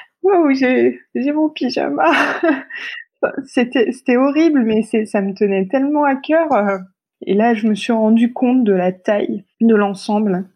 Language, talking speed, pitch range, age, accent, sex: French, 170 wpm, 195-245 Hz, 20-39, French, female